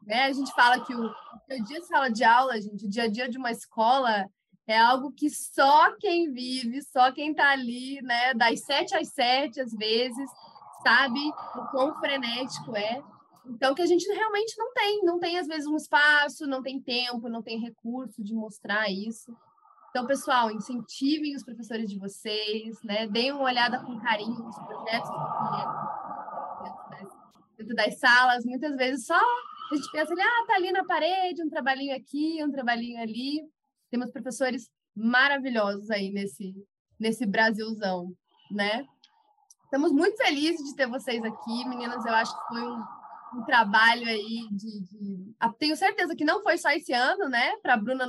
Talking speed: 170 wpm